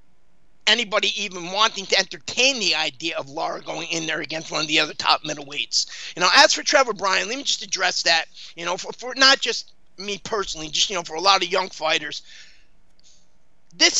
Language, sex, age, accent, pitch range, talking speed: English, male, 30-49, American, 155-210 Hz, 205 wpm